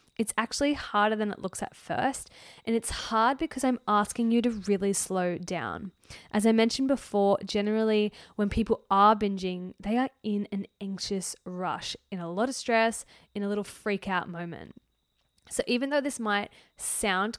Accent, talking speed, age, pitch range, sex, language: Australian, 175 wpm, 10-29, 200-245 Hz, female, English